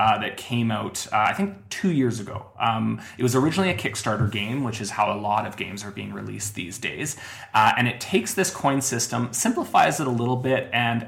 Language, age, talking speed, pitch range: English, 30-49, 225 wpm, 105-125 Hz